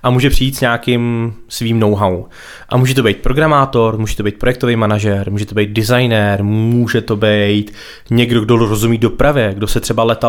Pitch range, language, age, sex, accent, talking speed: 110-125 Hz, Czech, 20-39, male, native, 185 wpm